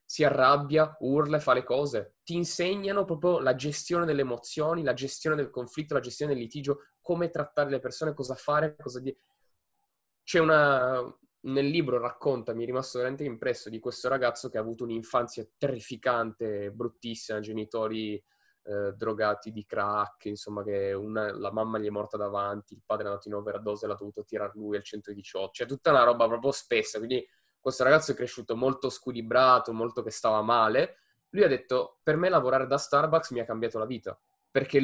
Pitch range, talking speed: 115-150 Hz, 185 wpm